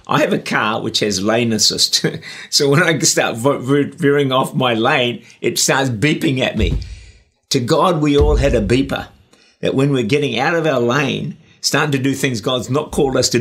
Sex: male